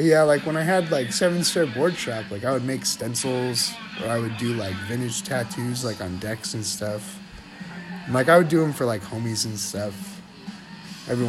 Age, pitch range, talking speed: 30-49, 100-145 Hz, 200 wpm